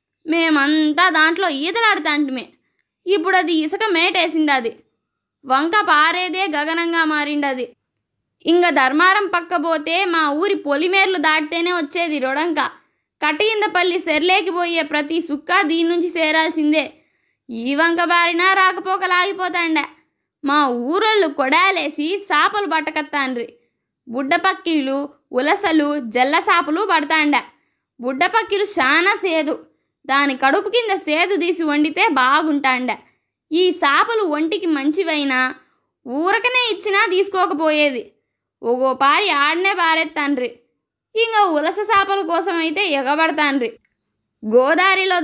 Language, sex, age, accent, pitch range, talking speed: Telugu, female, 20-39, native, 295-370 Hz, 85 wpm